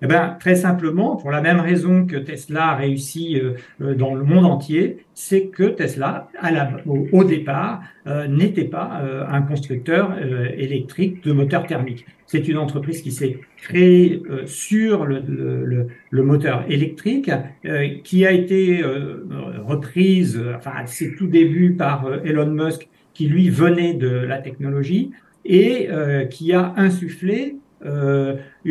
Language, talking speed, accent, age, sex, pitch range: French, 125 wpm, French, 60-79, male, 135-180 Hz